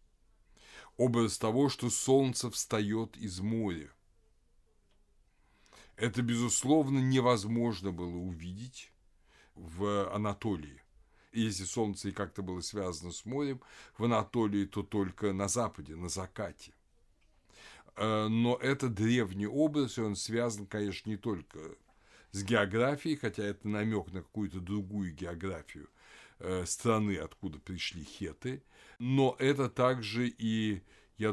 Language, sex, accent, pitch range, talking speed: Russian, male, native, 95-120 Hz, 115 wpm